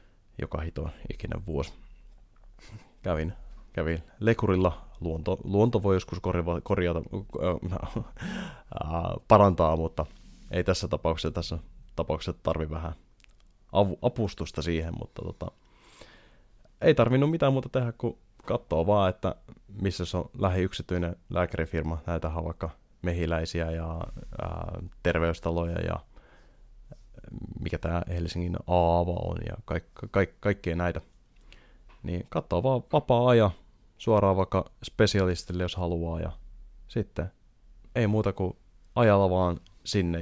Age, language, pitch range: 20-39, Finnish, 85-100 Hz